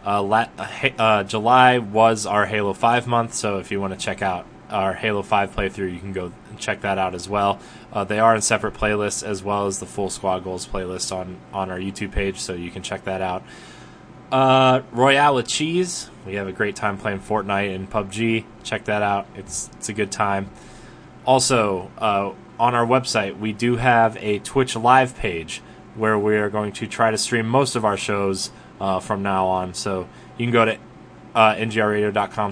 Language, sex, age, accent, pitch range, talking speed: English, male, 20-39, American, 100-120 Hz, 205 wpm